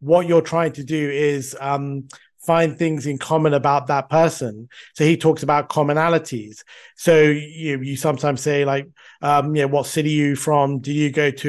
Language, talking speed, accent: English, 200 wpm, British